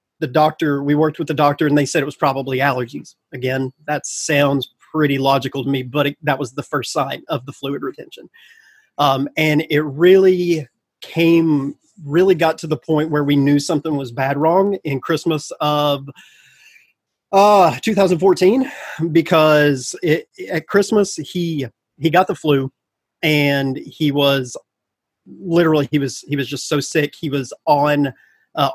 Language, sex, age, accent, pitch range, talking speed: English, male, 30-49, American, 140-160 Hz, 165 wpm